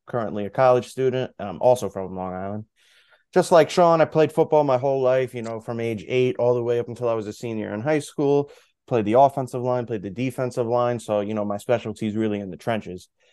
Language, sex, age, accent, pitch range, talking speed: English, male, 20-39, American, 110-140 Hz, 240 wpm